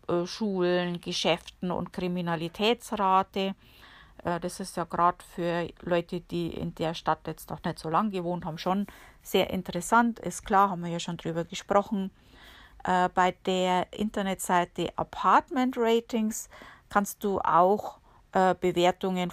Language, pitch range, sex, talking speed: German, 170-205 Hz, female, 125 wpm